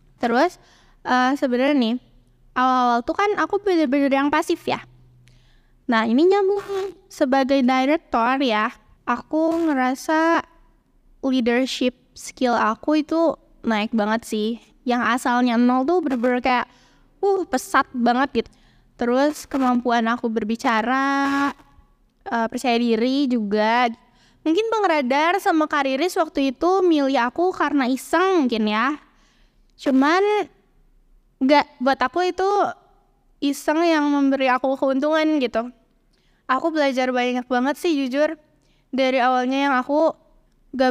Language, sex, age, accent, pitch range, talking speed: Indonesian, female, 10-29, native, 240-305 Hz, 115 wpm